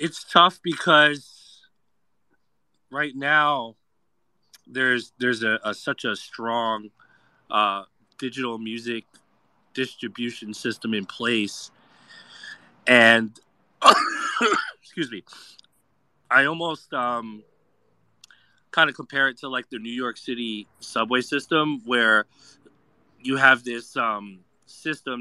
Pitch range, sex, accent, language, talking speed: 110-130 Hz, male, American, English, 100 wpm